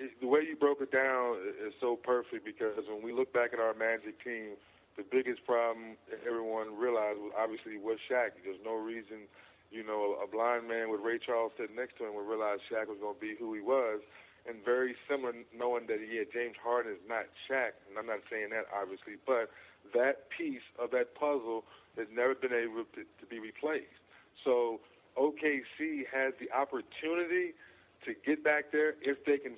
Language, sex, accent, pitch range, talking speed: English, male, American, 115-140 Hz, 195 wpm